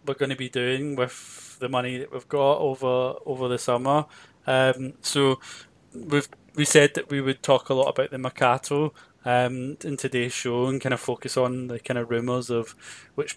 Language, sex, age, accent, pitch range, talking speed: English, male, 20-39, British, 125-140 Hz, 200 wpm